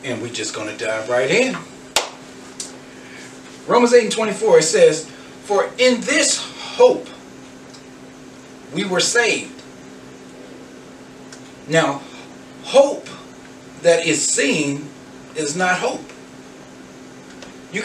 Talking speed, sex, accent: 100 wpm, male, American